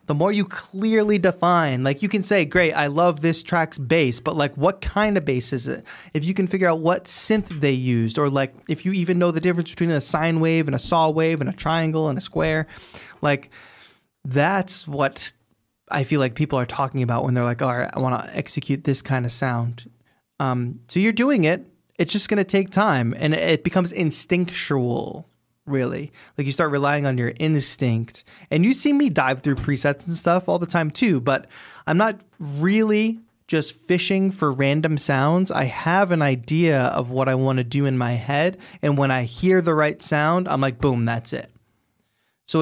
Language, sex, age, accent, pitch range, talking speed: English, male, 20-39, American, 135-175 Hz, 210 wpm